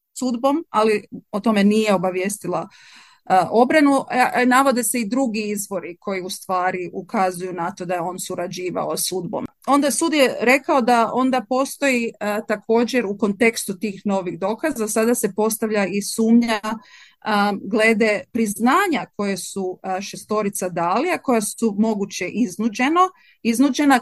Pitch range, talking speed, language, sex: 195-240 Hz, 145 wpm, Croatian, female